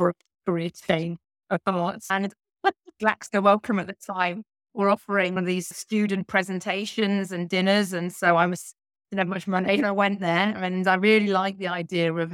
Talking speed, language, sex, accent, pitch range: 175 wpm, English, female, British, 165-185 Hz